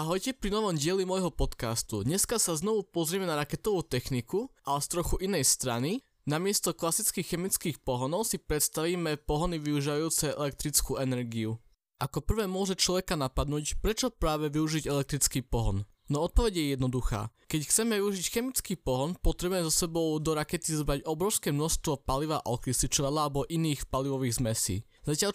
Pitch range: 140-180 Hz